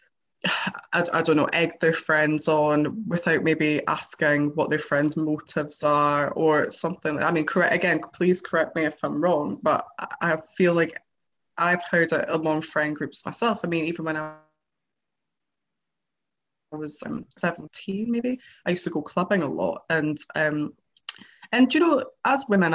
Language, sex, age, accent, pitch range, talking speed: English, female, 20-39, British, 155-195 Hz, 165 wpm